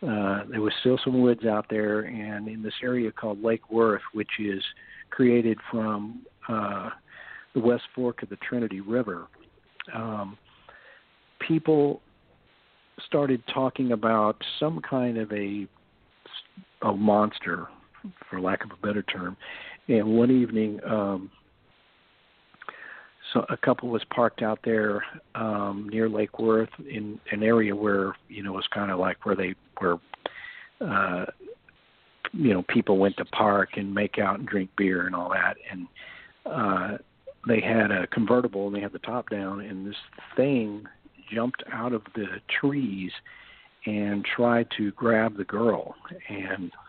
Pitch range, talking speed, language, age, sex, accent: 100-120 Hz, 150 wpm, English, 50-69, male, American